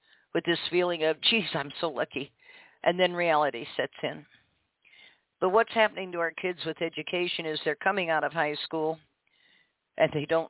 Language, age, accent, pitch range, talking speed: English, 50-69, American, 155-195 Hz, 175 wpm